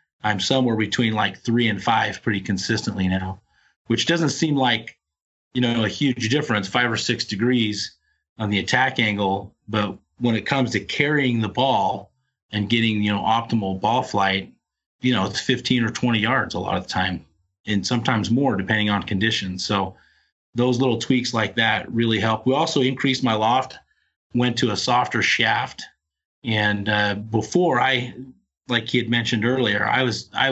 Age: 30-49